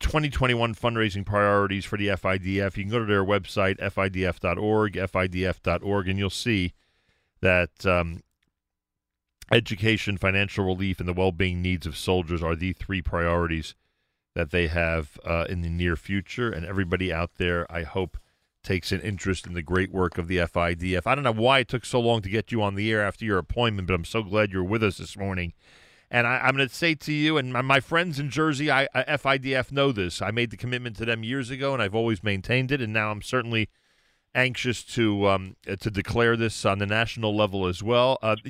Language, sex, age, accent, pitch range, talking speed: English, male, 40-59, American, 95-125 Hz, 205 wpm